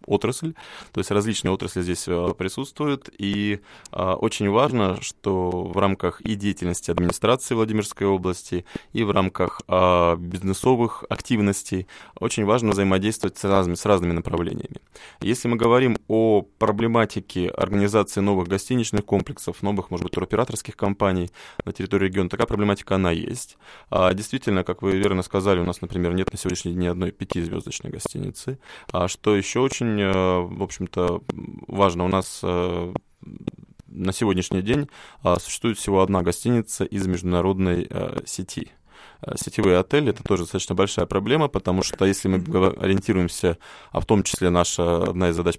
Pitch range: 90-105 Hz